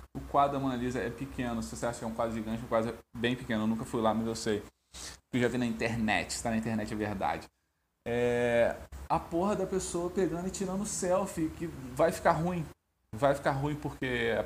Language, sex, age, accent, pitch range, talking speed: Portuguese, male, 20-39, Brazilian, 110-155 Hz, 235 wpm